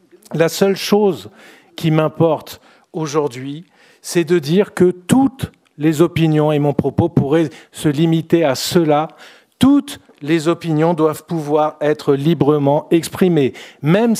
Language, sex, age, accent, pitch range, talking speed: French, male, 50-69, French, 155-200 Hz, 125 wpm